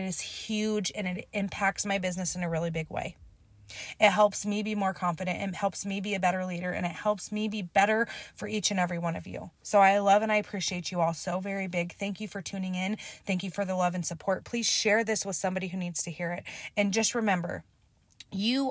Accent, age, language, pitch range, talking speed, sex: American, 20-39, English, 170-200 Hz, 245 wpm, female